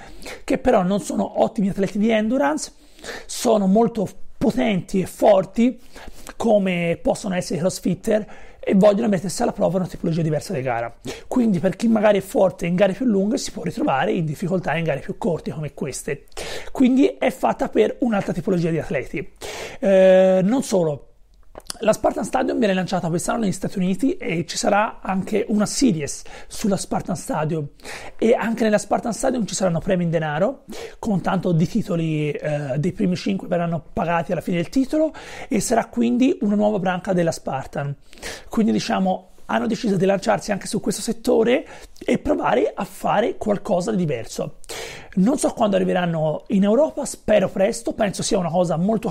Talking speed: 170 wpm